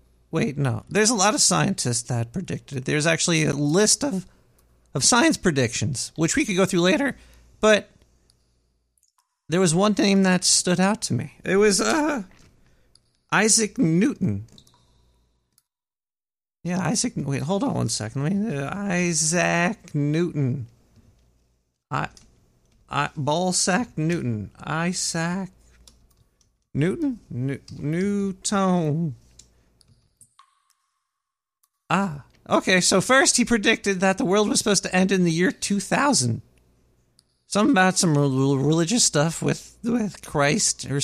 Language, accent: English, American